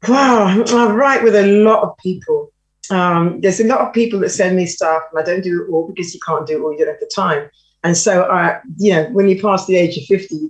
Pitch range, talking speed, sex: 160-215 Hz, 275 wpm, female